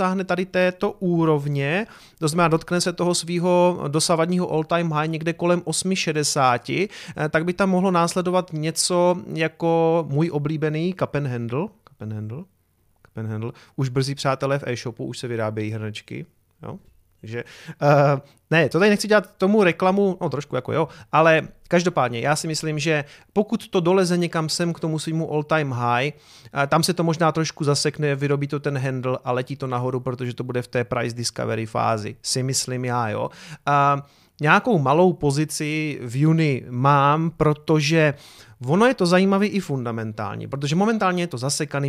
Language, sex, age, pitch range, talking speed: Czech, male, 30-49, 125-175 Hz, 170 wpm